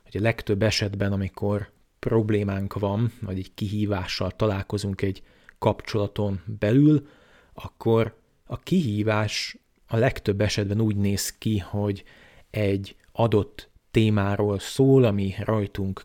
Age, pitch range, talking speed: 30-49, 100-110 Hz, 110 wpm